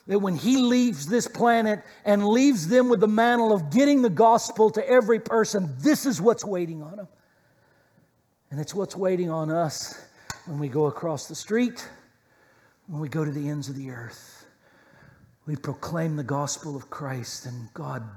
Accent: American